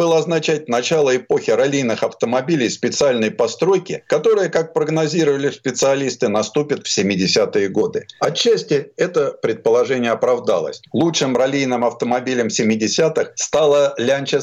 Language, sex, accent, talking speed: Russian, male, native, 110 wpm